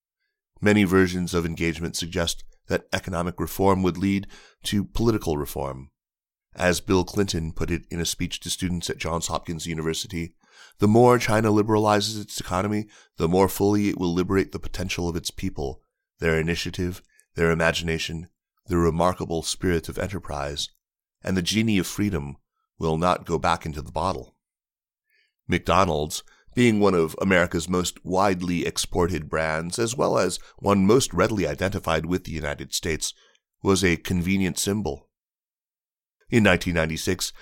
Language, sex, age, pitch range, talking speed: English, male, 30-49, 80-95 Hz, 145 wpm